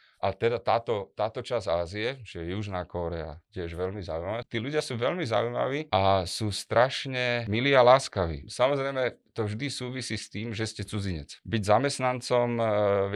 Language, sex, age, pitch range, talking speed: Slovak, male, 30-49, 95-115 Hz, 160 wpm